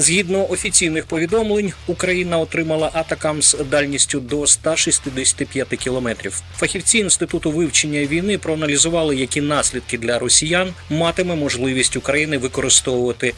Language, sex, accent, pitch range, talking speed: Ukrainian, male, native, 130-165 Hz, 105 wpm